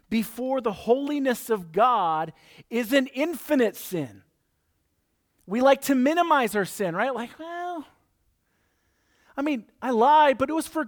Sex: male